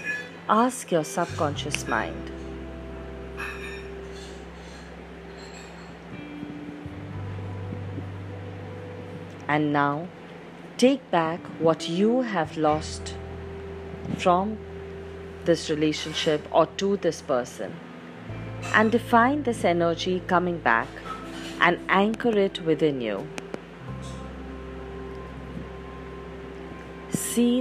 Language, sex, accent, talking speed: English, female, Indian, 65 wpm